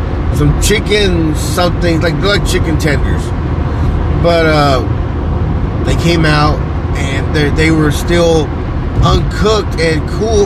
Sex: male